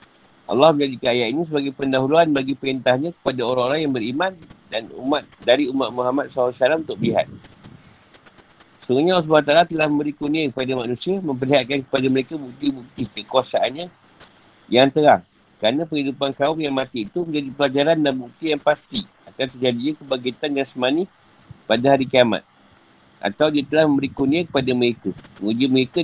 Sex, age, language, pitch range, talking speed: male, 50-69, Malay, 125-150 Hz, 145 wpm